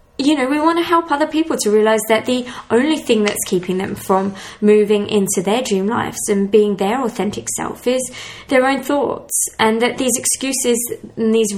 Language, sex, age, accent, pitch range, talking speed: English, female, 20-39, British, 200-245 Hz, 195 wpm